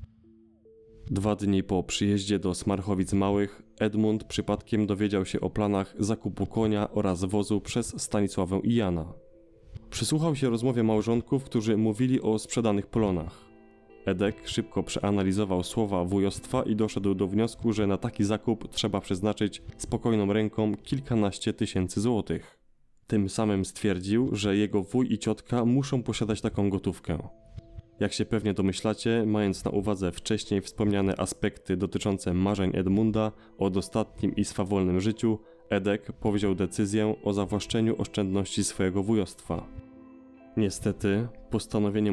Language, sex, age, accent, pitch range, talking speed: Polish, male, 20-39, native, 100-110 Hz, 130 wpm